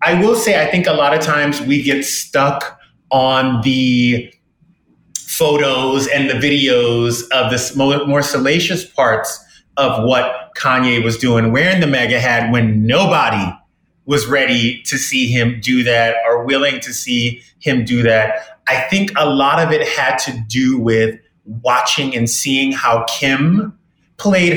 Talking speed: 155 wpm